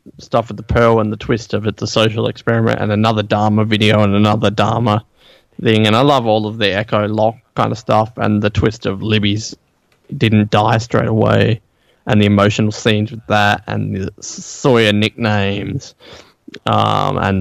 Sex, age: male, 20-39